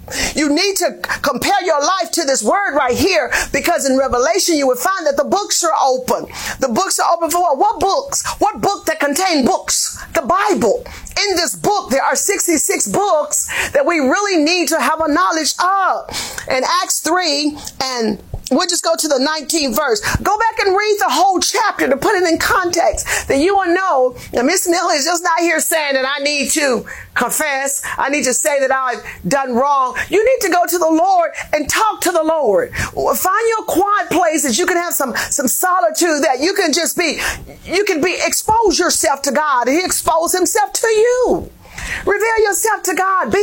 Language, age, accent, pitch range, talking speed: English, 40-59, American, 285-375 Hz, 200 wpm